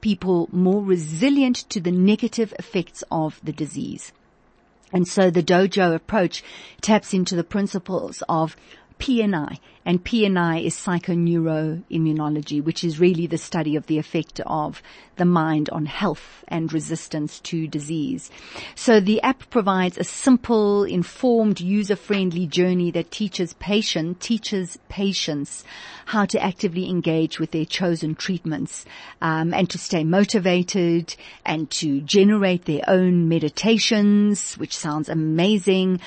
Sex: female